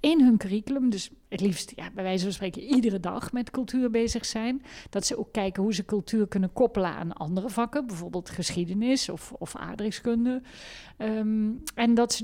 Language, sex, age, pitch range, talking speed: Dutch, female, 50-69, 195-240 Hz, 185 wpm